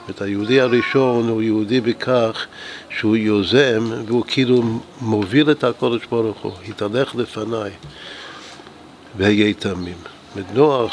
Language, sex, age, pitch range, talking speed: Hebrew, male, 60-79, 105-120 Hz, 115 wpm